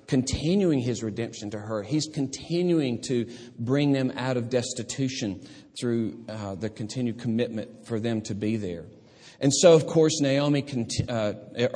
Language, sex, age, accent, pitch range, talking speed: English, male, 40-59, American, 110-155 Hz, 150 wpm